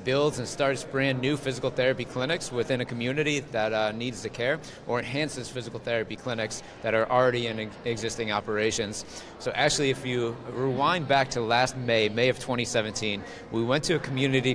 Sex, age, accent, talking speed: male, 30-49, American, 180 wpm